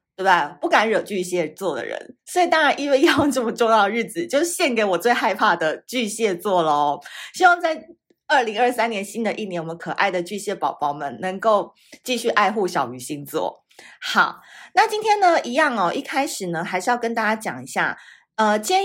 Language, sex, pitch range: Chinese, female, 175-245 Hz